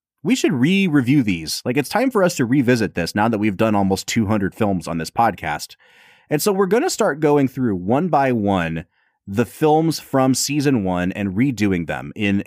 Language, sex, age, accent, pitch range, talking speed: English, male, 30-49, American, 100-145 Hz, 205 wpm